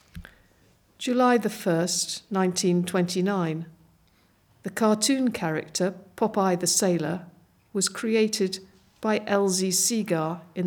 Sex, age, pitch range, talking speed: female, 50-69, 170-210 Hz, 85 wpm